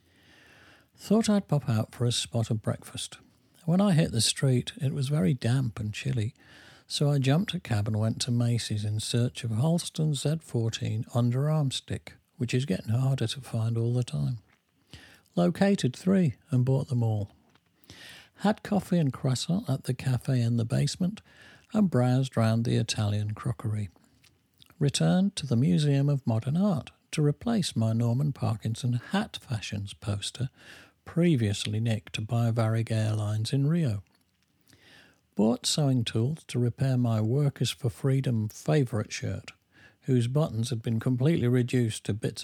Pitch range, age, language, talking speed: 110-150 Hz, 50-69, English, 155 wpm